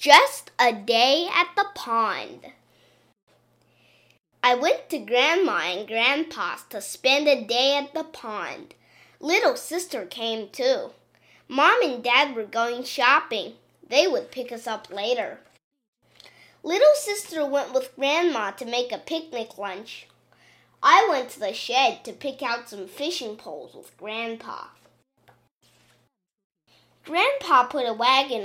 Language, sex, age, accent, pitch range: Chinese, female, 10-29, American, 220-300 Hz